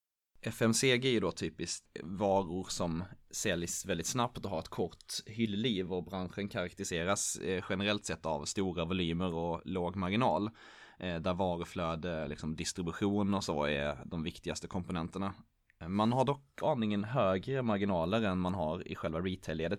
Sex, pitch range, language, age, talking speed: male, 85-100 Hz, Swedish, 20-39, 145 wpm